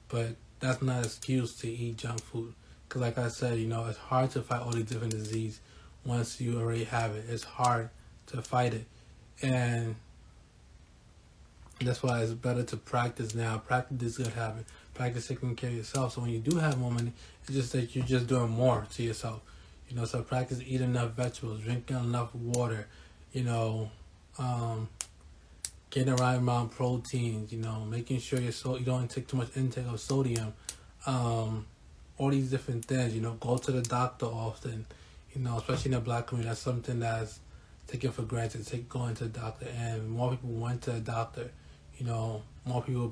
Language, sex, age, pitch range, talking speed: English, male, 20-39, 110-125 Hz, 195 wpm